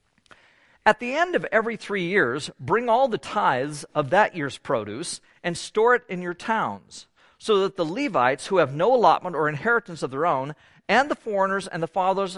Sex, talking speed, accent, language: male, 195 wpm, American, English